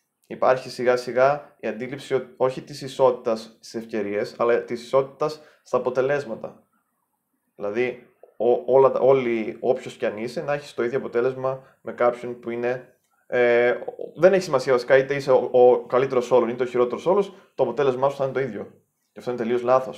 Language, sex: Greek, male